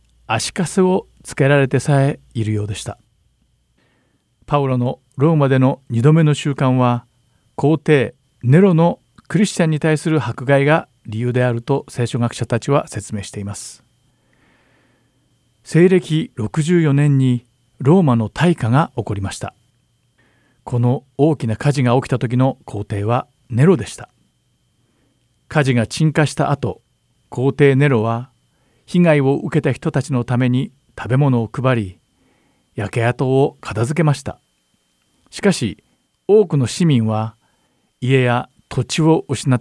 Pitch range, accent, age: 115-145 Hz, native, 50-69